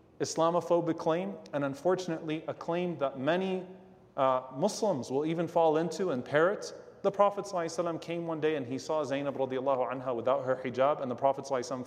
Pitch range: 135-185 Hz